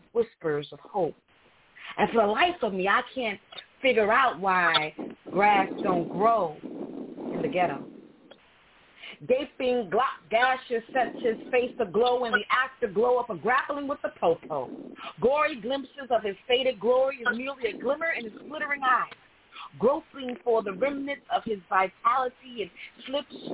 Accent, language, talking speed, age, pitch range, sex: American, English, 150 wpm, 40-59, 210-275 Hz, female